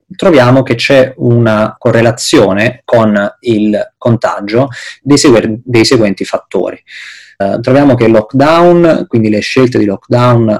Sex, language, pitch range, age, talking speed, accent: male, Italian, 100-120 Hz, 20-39, 120 wpm, native